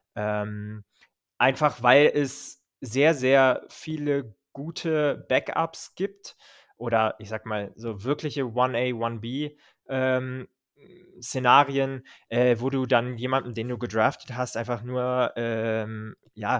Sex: male